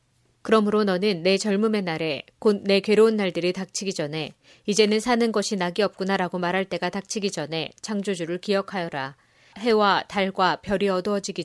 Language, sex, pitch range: Korean, female, 175-210 Hz